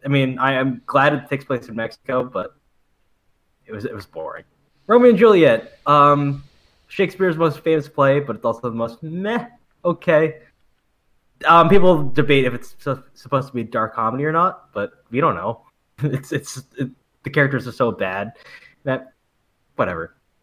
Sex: male